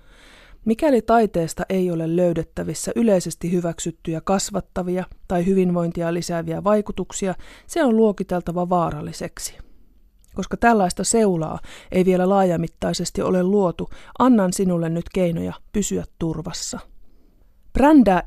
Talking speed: 100 wpm